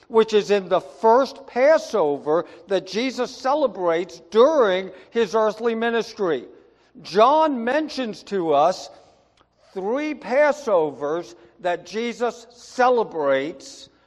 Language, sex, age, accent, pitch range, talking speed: English, male, 60-79, American, 200-270 Hz, 95 wpm